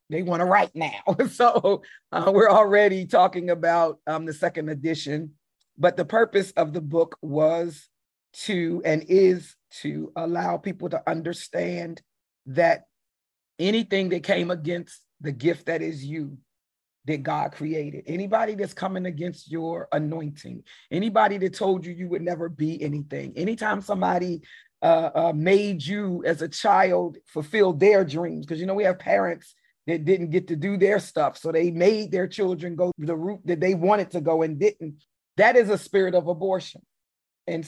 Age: 40-59